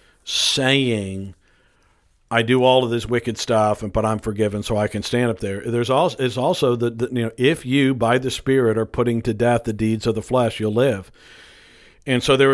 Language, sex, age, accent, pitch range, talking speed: English, male, 50-69, American, 110-130 Hz, 210 wpm